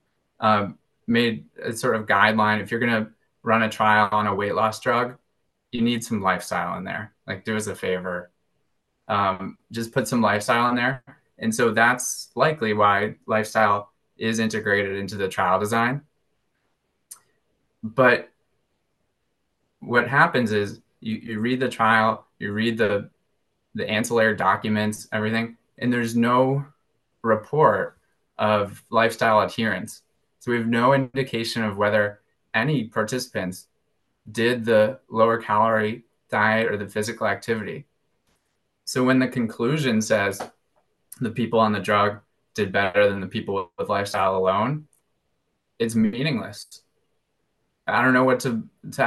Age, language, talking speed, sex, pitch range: 20-39, English, 140 wpm, male, 105-120 Hz